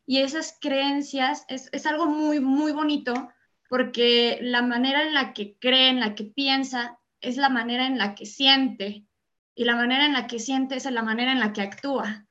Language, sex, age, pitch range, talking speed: Spanish, female, 20-39, 235-285 Hz, 200 wpm